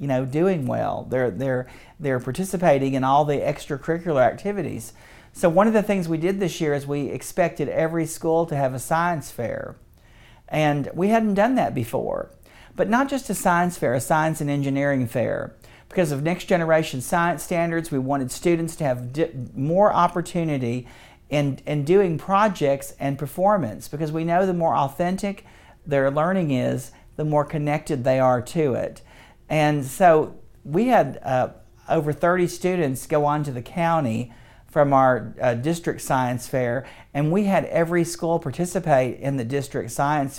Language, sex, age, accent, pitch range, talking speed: English, male, 50-69, American, 135-175 Hz, 170 wpm